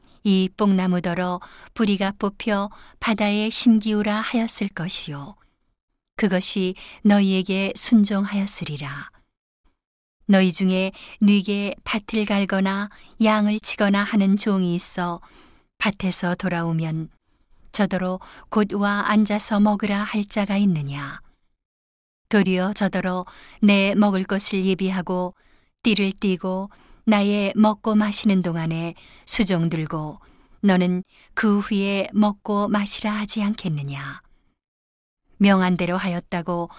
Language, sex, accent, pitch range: Korean, female, native, 185-210 Hz